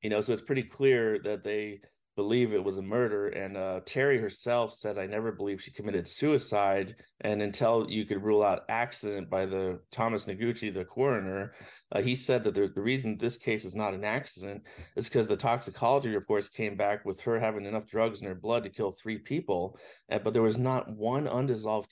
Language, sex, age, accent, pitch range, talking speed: English, male, 30-49, American, 105-120 Hz, 205 wpm